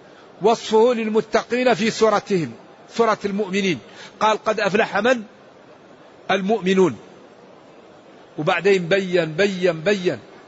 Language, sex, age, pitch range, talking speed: Arabic, male, 50-69, 170-215 Hz, 85 wpm